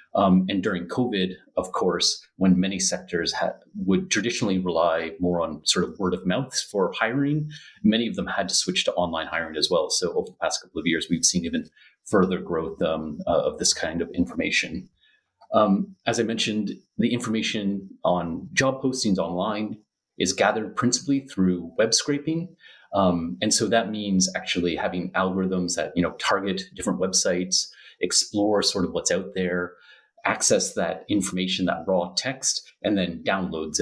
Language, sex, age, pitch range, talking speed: English, male, 30-49, 90-120 Hz, 170 wpm